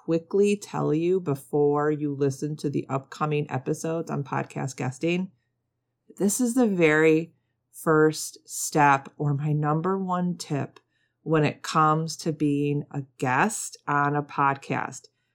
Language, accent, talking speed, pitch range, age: English, American, 135 wpm, 140-165 Hz, 30-49